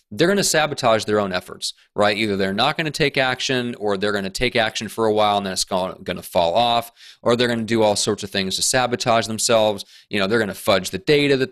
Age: 30-49